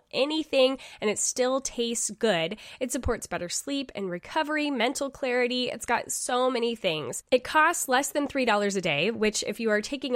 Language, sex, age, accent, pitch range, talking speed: English, female, 10-29, American, 200-255 Hz, 190 wpm